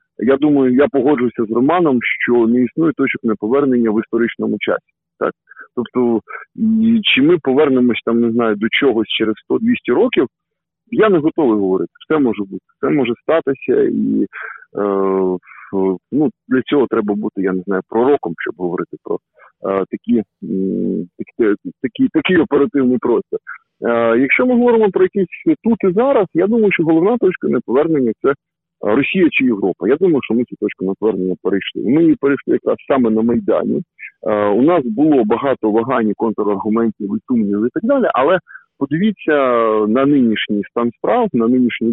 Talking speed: 155 wpm